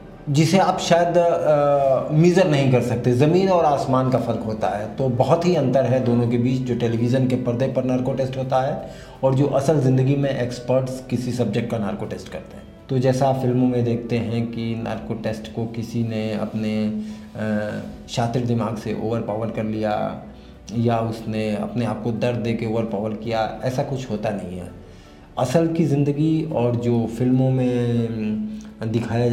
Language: Hindi